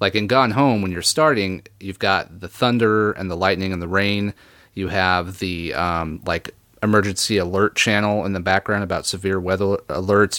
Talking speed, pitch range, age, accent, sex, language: 185 wpm, 90-110 Hz, 30-49, American, male, English